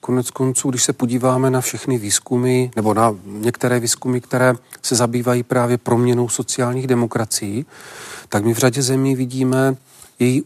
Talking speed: 150 wpm